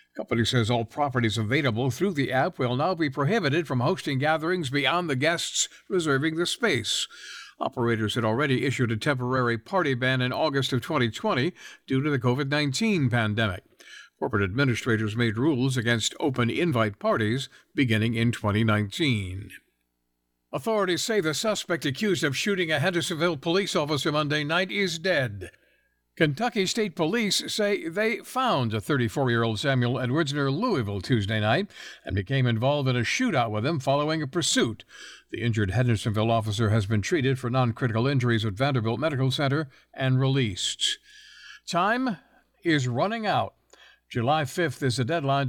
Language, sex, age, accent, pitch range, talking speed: English, male, 60-79, American, 120-160 Hz, 150 wpm